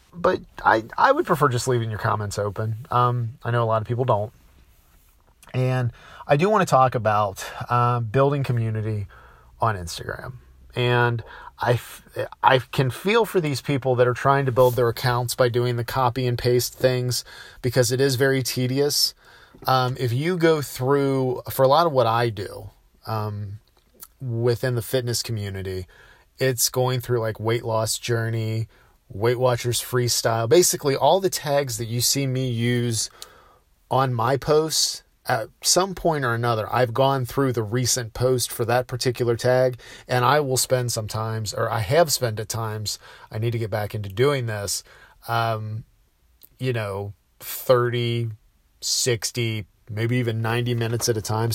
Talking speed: 165 wpm